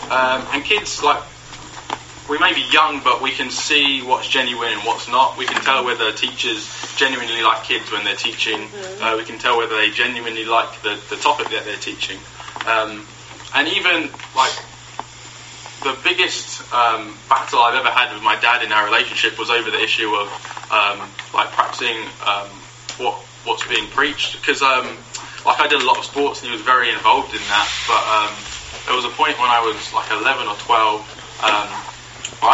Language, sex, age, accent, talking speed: English, male, 20-39, British, 190 wpm